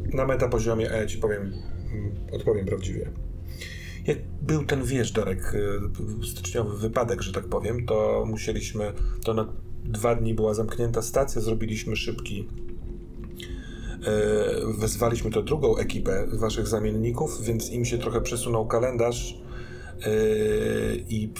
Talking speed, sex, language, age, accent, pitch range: 115 wpm, male, Polish, 30-49, native, 100-115 Hz